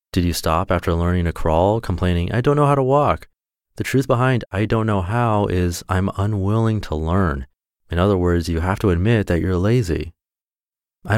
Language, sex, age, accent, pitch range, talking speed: English, male, 30-49, American, 90-110 Hz, 200 wpm